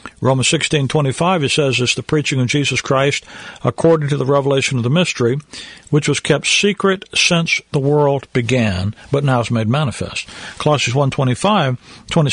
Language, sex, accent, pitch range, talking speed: English, male, American, 125-165 Hz, 170 wpm